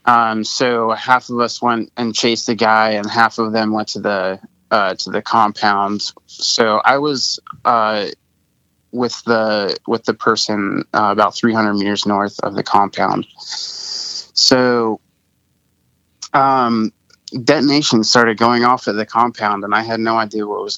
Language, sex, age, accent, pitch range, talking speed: English, male, 20-39, American, 105-120 Hz, 160 wpm